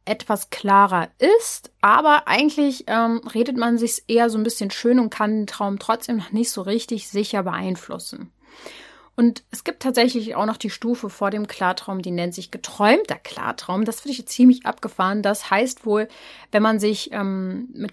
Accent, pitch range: German, 195-235 Hz